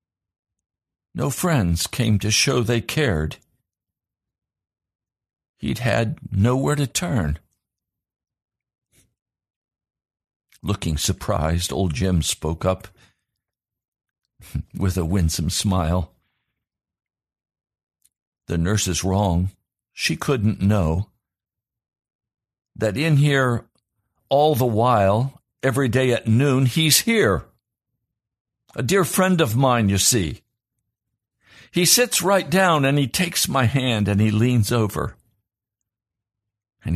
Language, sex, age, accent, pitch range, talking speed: English, male, 60-79, American, 95-120 Hz, 100 wpm